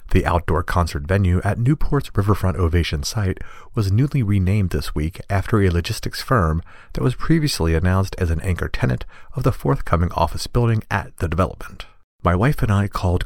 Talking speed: 175 wpm